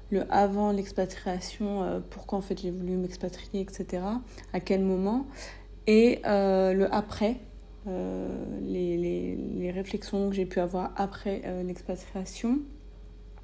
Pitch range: 180-200 Hz